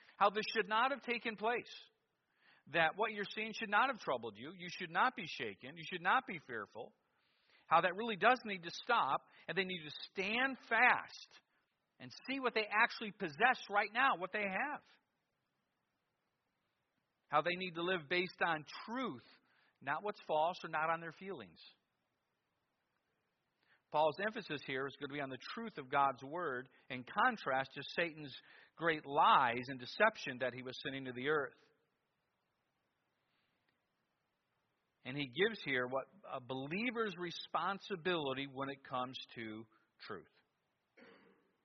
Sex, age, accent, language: male, 50-69, American, English